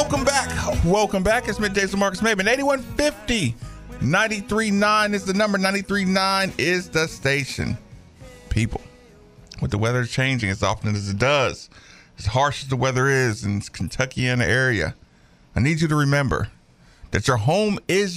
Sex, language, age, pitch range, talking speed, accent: male, English, 50-69, 105-175 Hz, 155 wpm, American